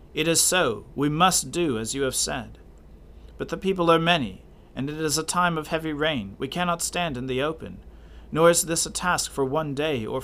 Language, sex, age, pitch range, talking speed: English, male, 40-59, 115-155 Hz, 225 wpm